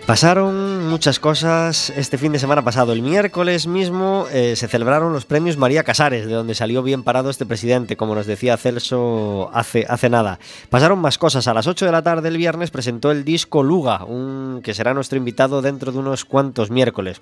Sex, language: male, Spanish